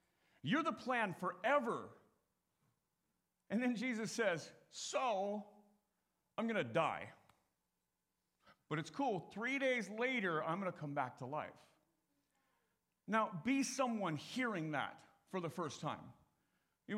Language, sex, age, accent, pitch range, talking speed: English, male, 50-69, American, 155-230 Hz, 125 wpm